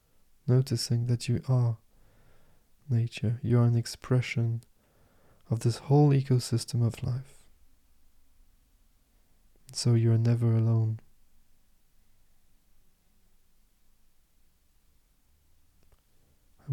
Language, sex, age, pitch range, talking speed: English, male, 20-39, 110-125 Hz, 75 wpm